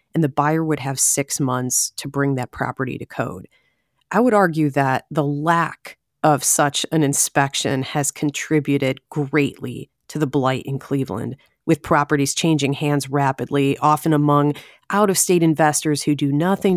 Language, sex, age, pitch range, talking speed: English, female, 30-49, 140-170 Hz, 155 wpm